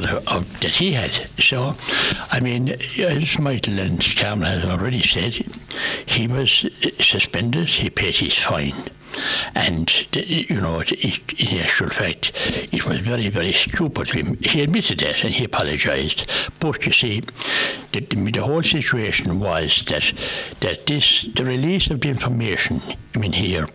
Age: 60-79